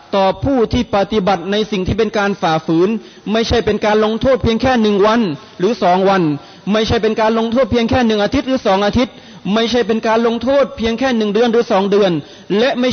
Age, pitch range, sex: 30-49, 190-230 Hz, male